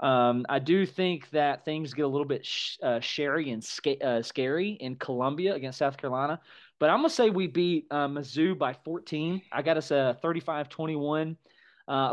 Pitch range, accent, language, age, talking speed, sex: 125-170 Hz, American, English, 30-49, 180 wpm, male